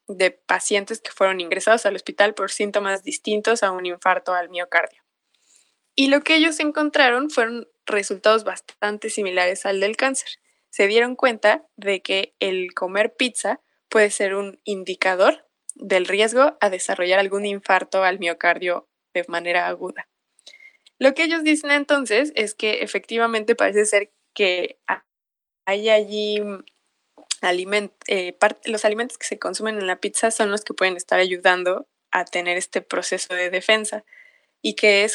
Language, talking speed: Spanish, 150 wpm